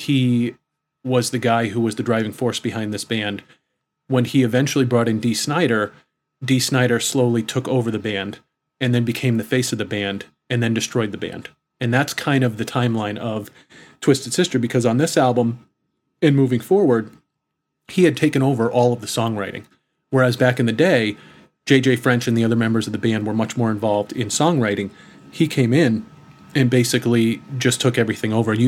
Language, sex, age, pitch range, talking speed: English, male, 30-49, 110-130 Hz, 195 wpm